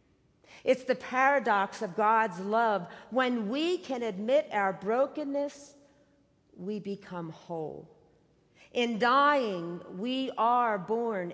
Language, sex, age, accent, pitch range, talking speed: English, female, 50-69, American, 180-250 Hz, 105 wpm